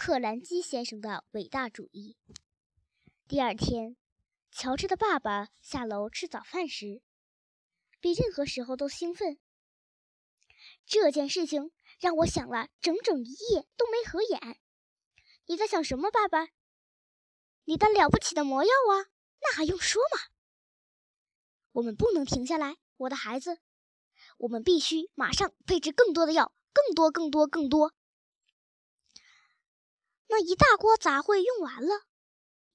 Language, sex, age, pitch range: Chinese, male, 10-29, 260-370 Hz